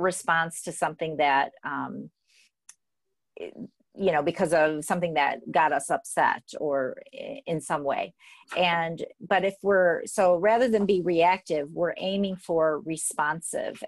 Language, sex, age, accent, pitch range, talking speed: English, female, 40-59, American, 160-190 Hz, 135 wpm